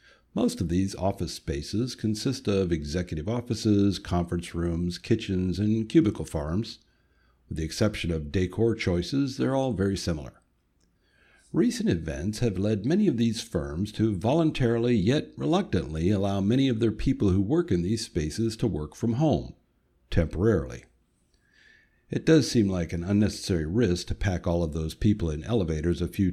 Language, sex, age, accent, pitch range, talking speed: English, male, 60-79, American, 85-115 Hz, 155 wpm